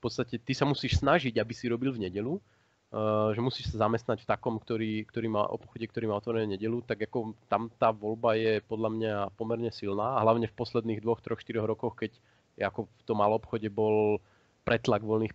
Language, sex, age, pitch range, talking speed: Slovak, male, 30-49, 105-120 Hz, 190 wpm